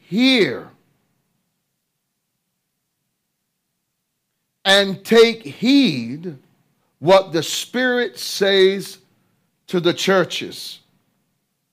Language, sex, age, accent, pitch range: English, male, 50-69, American, 160-195 Hz